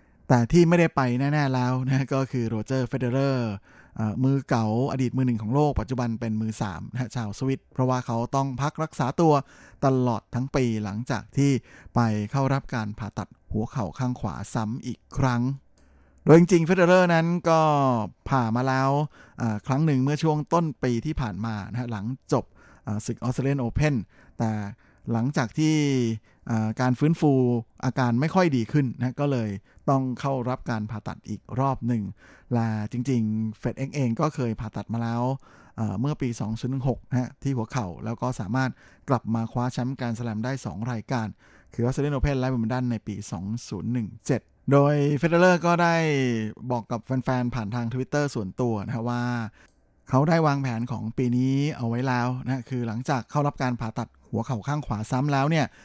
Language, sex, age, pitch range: Thai, male, 20-39, 115-135 Hz